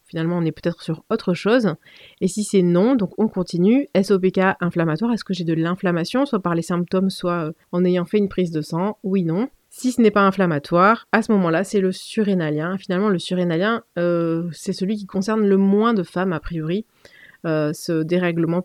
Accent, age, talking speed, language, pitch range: French, 30-49, 205 wpm, French, 175-205 Hz